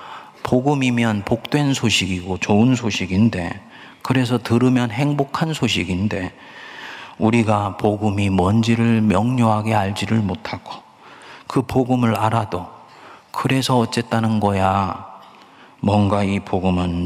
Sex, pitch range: male, 95-130 Hz